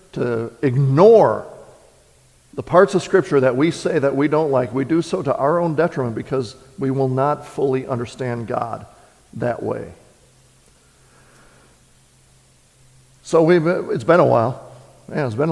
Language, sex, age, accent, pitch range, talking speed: English, male, 50-69, American, 125-155 Hz, 145 wpm